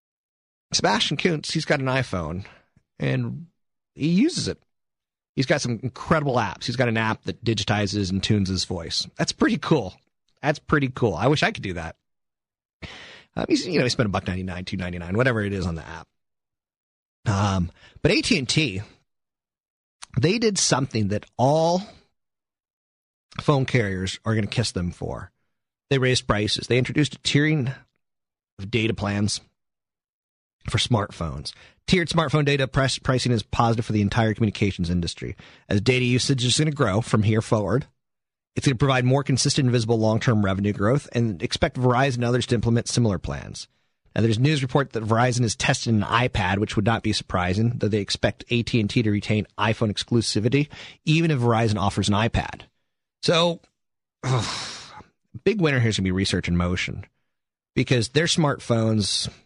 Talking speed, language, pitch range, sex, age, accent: 170 wpm, English, 100-135 Hz, male, 30-49, American